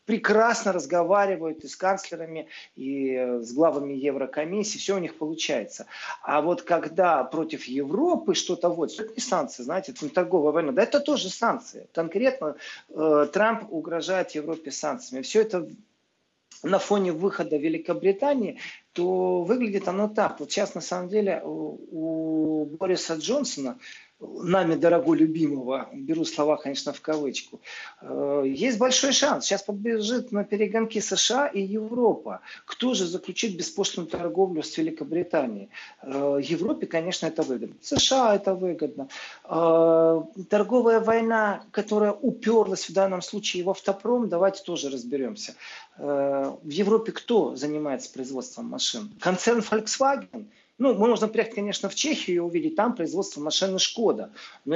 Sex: male